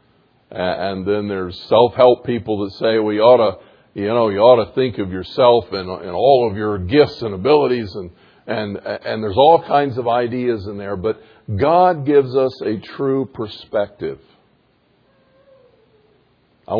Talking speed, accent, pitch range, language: 160 wpm, American, 100-125 Hz, English